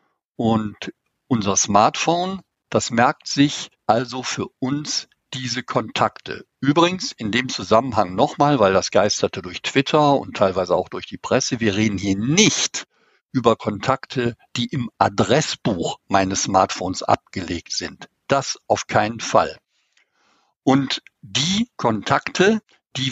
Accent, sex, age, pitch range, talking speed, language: German, male, 60-79, 110-145 Hz, 125 wpm, German